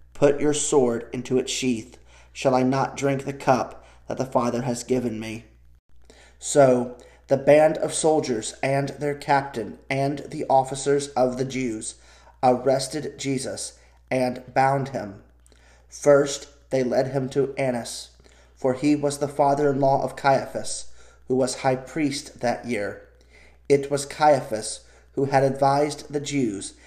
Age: 30-49